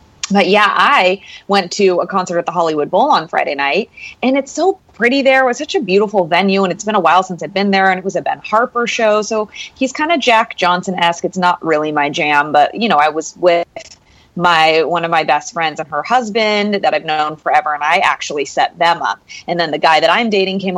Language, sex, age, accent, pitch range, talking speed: English, female, 30-49, American, 170-260 Hz, 250 wpm